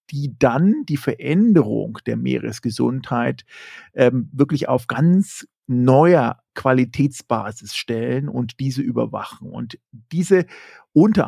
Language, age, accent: German, 50-69, German